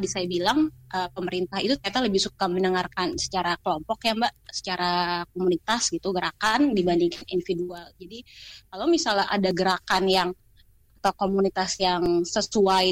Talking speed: 140 wpm